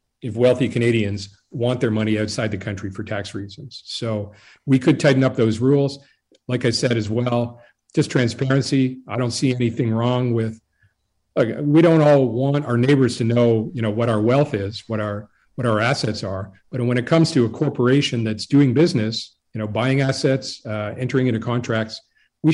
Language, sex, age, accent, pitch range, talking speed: English, male, 40-59, American, 110-135 Hz, 190 wpm